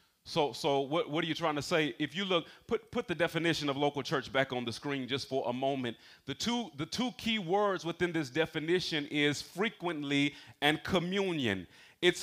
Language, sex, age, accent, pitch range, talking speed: English, male, 30-49, American, 165-205 Hz, 200 wpm